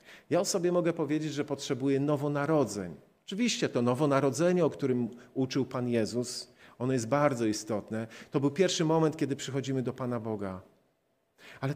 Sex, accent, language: male, native, Polish